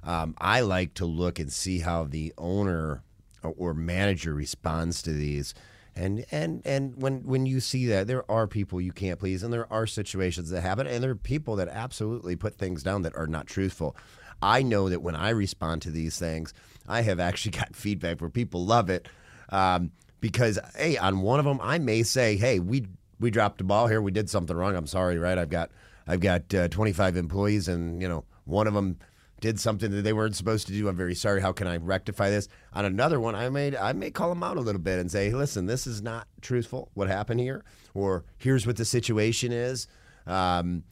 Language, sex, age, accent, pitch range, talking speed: English, male, 30-49, American, 90-120 Hz, 220 wpm